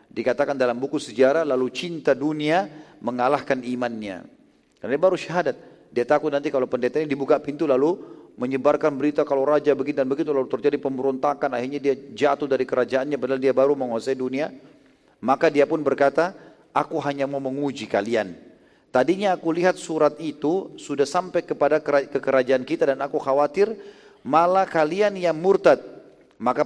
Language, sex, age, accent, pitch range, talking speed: Indonesian, male, 40-59, native, 130-160 Hz, 160 wpm